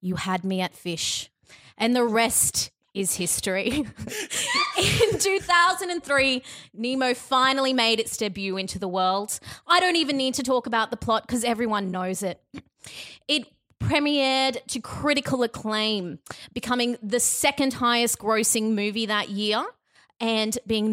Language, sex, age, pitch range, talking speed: English, female, 20-39, 185-245 Hz, 140 wpm